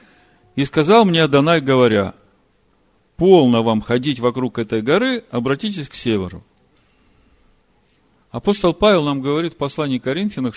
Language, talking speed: Russian, 120 wpm